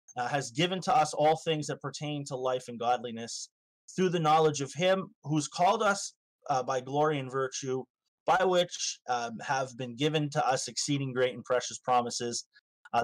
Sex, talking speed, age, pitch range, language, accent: male, 185 wpm, 30-49, 125-160 Hz, English, American